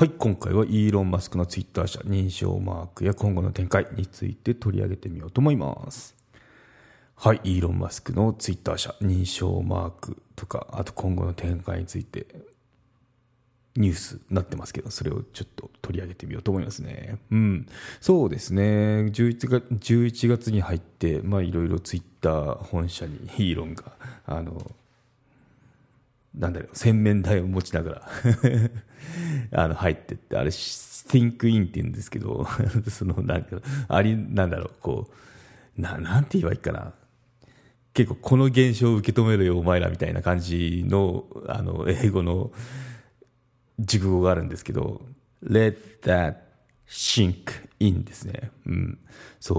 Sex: male